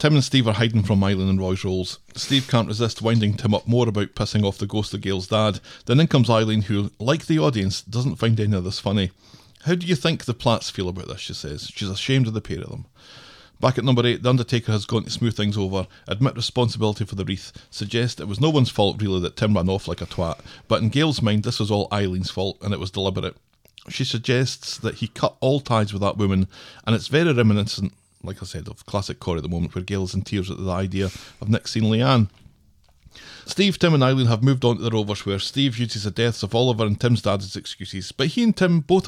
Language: English